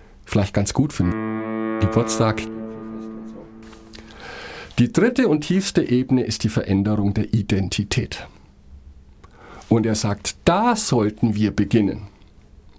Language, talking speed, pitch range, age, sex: German, 105 wpm, 95-135 Hz, 50-69, male